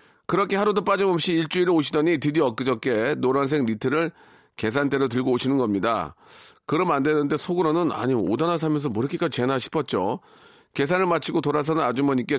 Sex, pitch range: male, 115-165 Hz